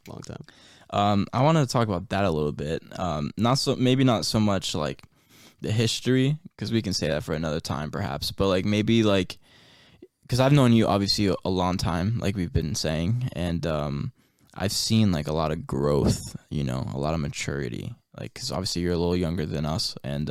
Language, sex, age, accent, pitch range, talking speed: English, male, 20-39, American, 85-120 Hz, 215 wpm